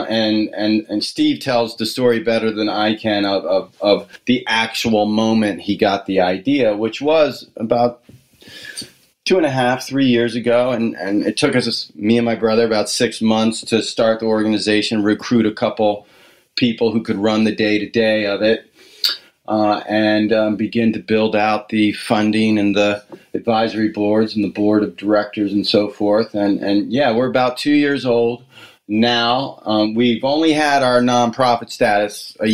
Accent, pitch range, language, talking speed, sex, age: American, 105-120 Hz, English, 175 wpm, male, 30-49